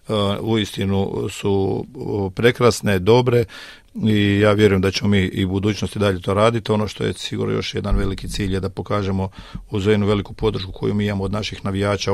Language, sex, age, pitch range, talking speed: Croatian, male, 40-59, 95-105 Hz, 190 wpm